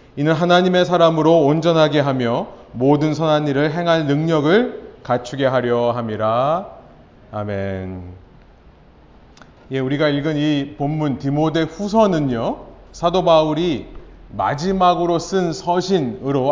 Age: 30-49